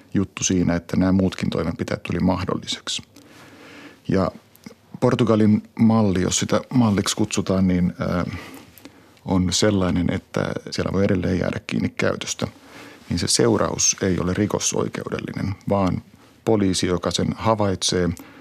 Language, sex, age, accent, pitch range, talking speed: Finnish, male, 50-69, native, 90-105 Hz, 115 wpm